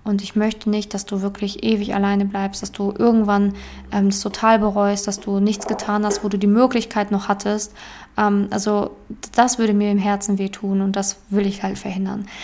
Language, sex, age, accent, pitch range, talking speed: German, female, 20-39, German, 205-235 Hz, 205 wpm